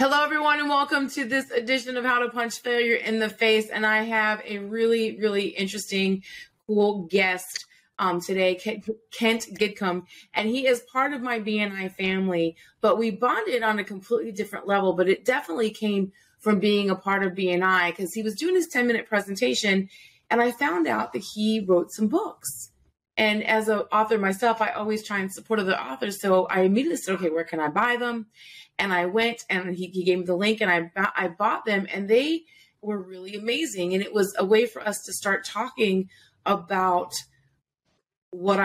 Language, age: English, 30-49